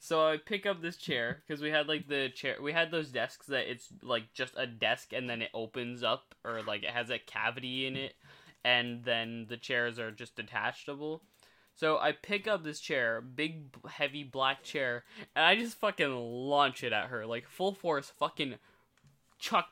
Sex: male